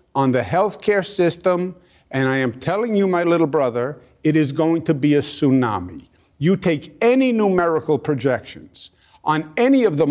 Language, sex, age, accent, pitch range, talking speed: English, male, 50-69, American, 145-190 Hz, 165 wpm